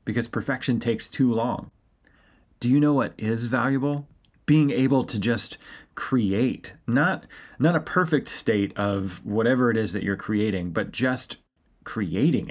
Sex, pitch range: male, 100-125 Hz